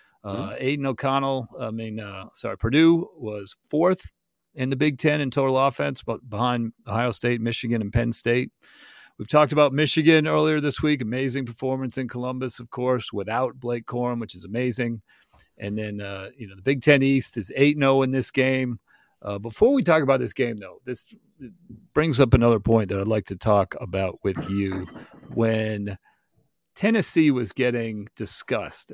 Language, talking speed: English, 175 wpm